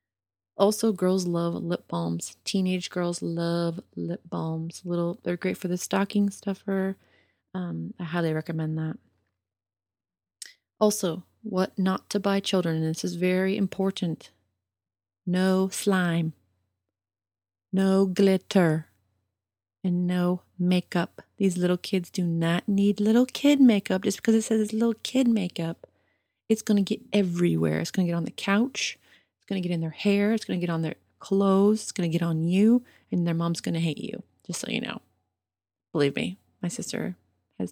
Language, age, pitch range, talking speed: English, 30-49, 145-195 Hz, 165 wpm